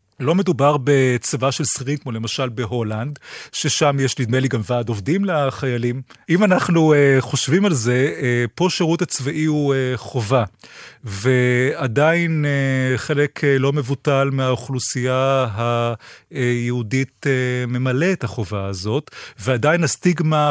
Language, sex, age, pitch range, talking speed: Hebrew, male, 30-49, 125-165 Hz, 130 wpm